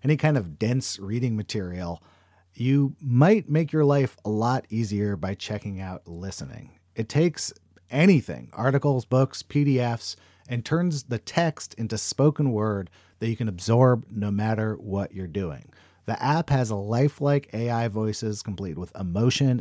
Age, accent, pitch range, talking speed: 40-59, American, 105-145 Hz, 155 wpm